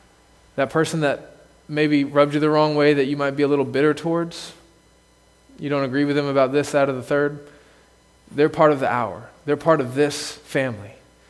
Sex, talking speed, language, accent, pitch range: male, 200 wpm, English, American, 125-180 Hz